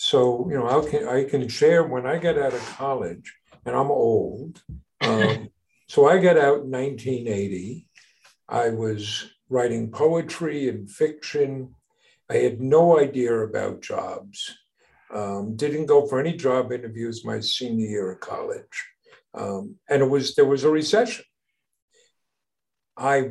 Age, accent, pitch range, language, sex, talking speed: 50-69, American, 125-205 Hz, English, male, 145 wpm